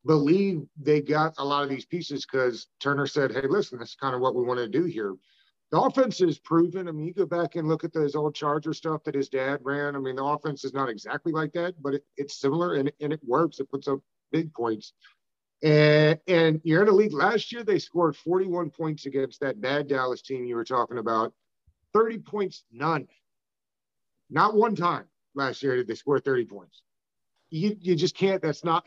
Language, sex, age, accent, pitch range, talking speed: English, male, 50-69, American, 135-175 Hz, 215 wpm